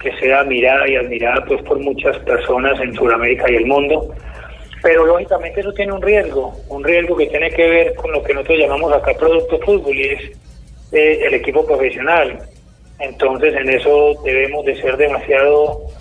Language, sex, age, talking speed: Spanish, male, 40-59, 170 wpm